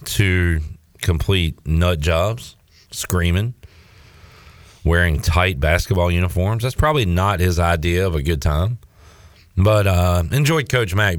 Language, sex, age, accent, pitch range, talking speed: English, male, 40-59, American, 85-105 Hz, 125 wpm